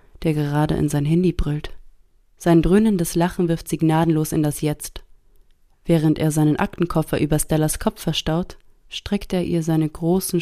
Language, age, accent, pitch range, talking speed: German, 30-49, German, 150-170 Hz, 160 wpm